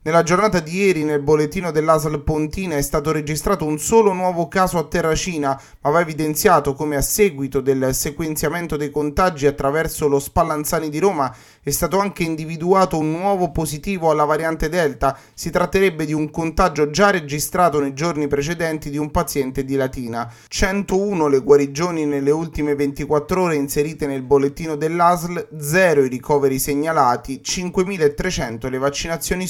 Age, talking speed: 30-49, 155 wpm